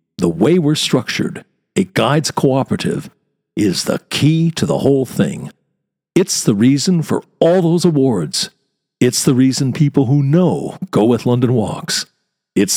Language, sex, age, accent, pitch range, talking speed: English, male, 60-79, American, 110-145 Hz, 150 wpm